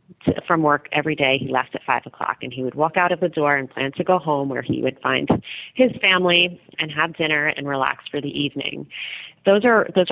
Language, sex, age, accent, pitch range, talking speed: English, female, 30-49, American, 150-180 Hz, 230 wpm